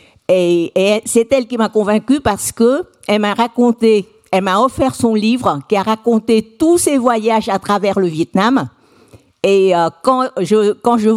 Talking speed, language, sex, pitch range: 170 wpm, French, female, 185-235 Hz